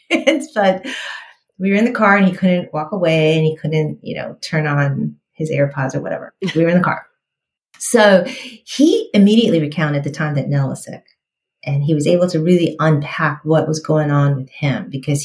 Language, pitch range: English, 150-195 Hz